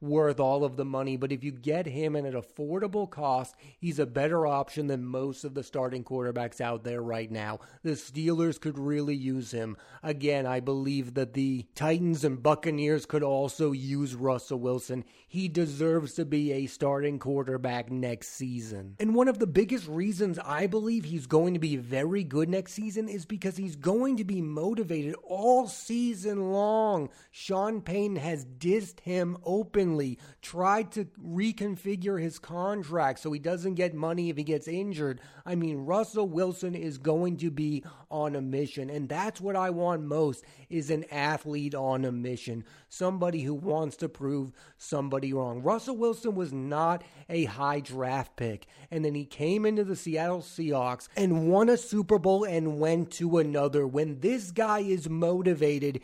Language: English